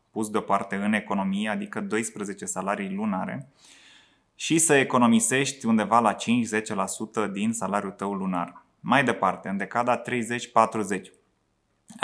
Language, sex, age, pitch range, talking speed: Romanian, male, 20-39, 105-130 Hz, 115 wpm